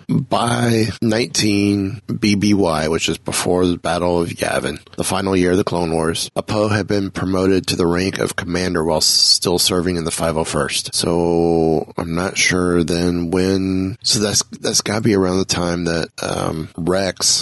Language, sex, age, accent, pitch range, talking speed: English, male, 30-49, American, 85-100 Hz, 170 wpm